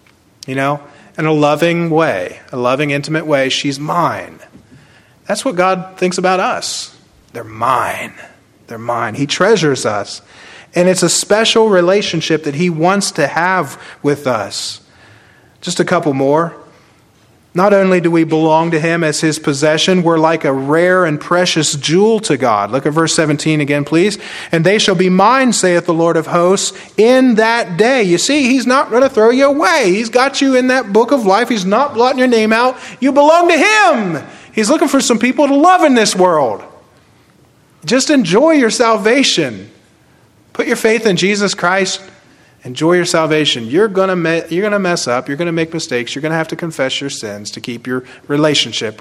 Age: 30-49